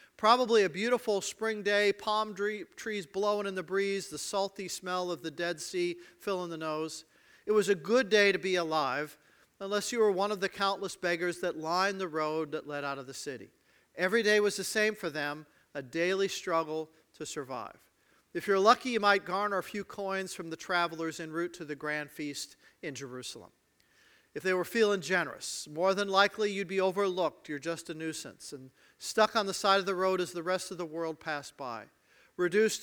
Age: 50-69